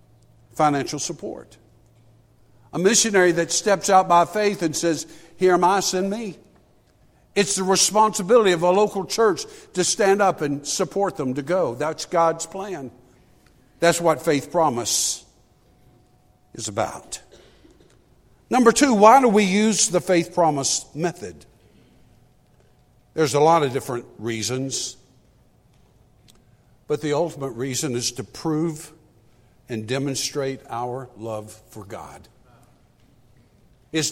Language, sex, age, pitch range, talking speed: English, male, 60-79, 125-180 Hz, 125 wpm